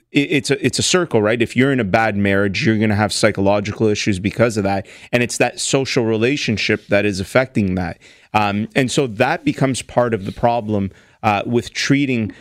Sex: male